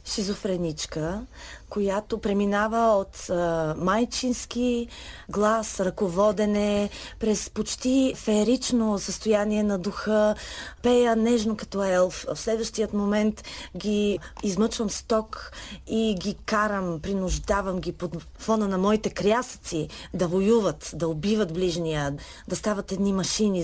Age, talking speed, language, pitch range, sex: 30-49, 105 wpm, Bulgarian, 180-225 Hz, female